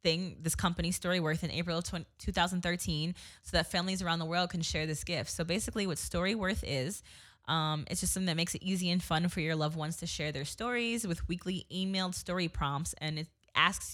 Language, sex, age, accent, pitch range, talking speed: English, female, 20-39, American, 155-185 Hz, 220 wpm